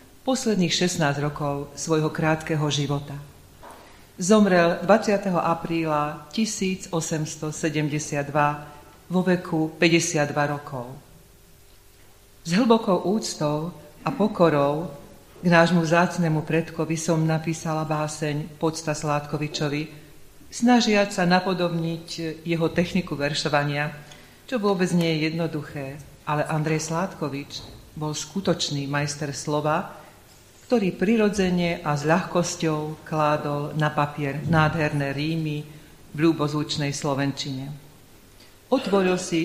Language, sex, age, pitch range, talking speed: Slovak, female, 40-59, 145-170 Hz, 90 wpm